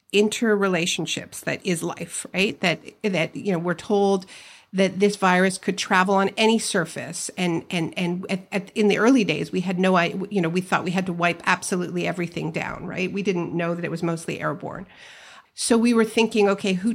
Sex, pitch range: female, 180-220 Hz